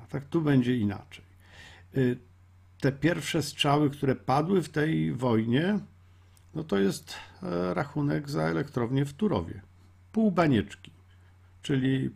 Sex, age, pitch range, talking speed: male, 50-69, 100-140 Hz, 115 wpm